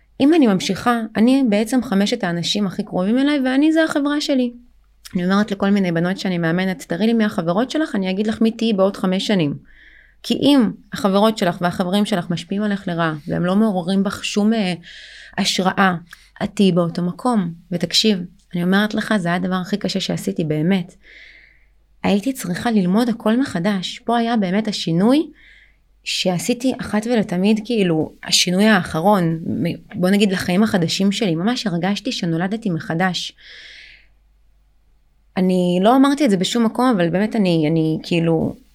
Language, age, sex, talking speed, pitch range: Hebrew, 30-49, female, 155 wpm, 175-225 Hz